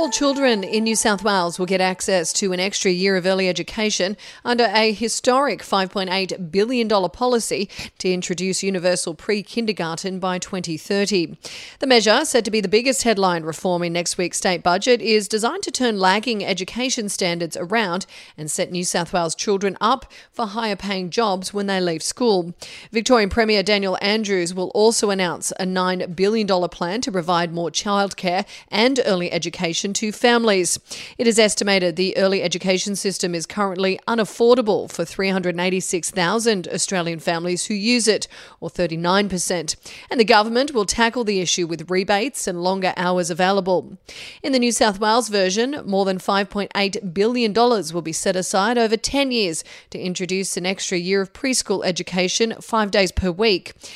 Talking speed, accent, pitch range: 160 wpm, Australian, 180-220 Hz